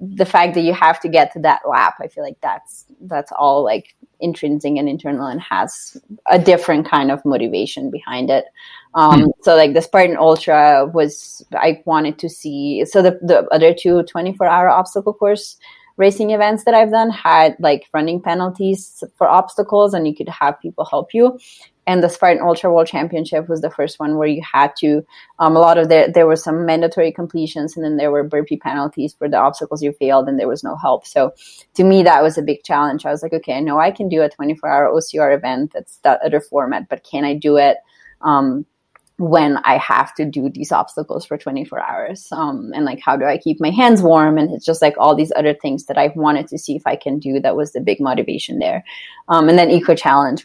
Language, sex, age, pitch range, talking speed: English, female, 30-49, 150-190 Hz, 220 wpm